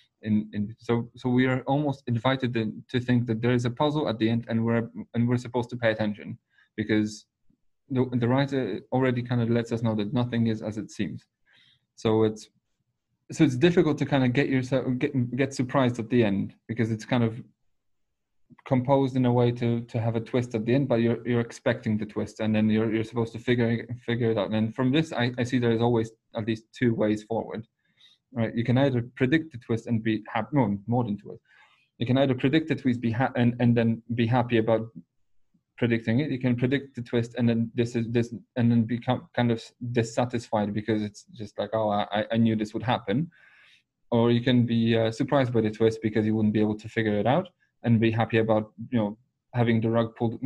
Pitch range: 110-125 Hz